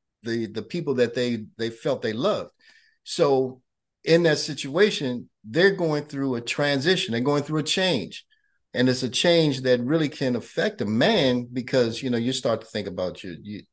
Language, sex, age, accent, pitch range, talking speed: English, male, 50-69, American, 120-155 Hz, 180 wpm